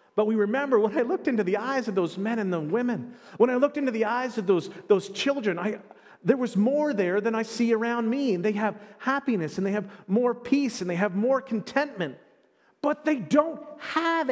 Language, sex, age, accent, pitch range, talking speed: English, male, 40-59, American, 180-245 Hz, 220 wpm